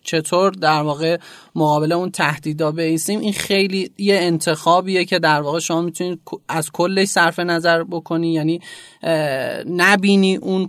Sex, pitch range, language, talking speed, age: male, 155-185 Hz, Persian, 140 wpm, 30-49